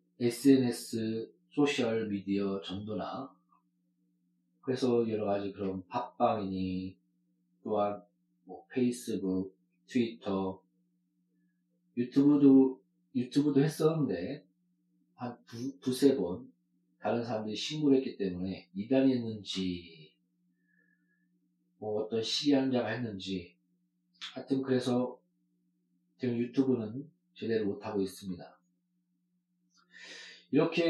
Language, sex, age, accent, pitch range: Korean, male, 40-59, native, 90-135 Hz